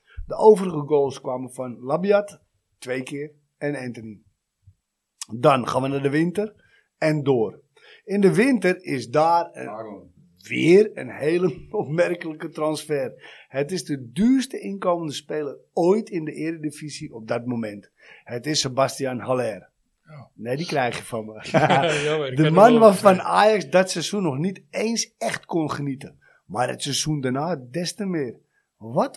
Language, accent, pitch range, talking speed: Dutch, Dutch, 135-200 Hz, 150 wpm